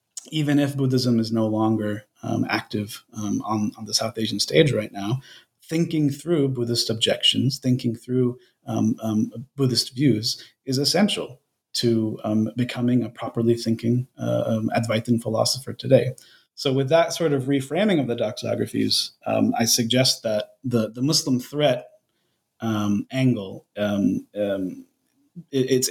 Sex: male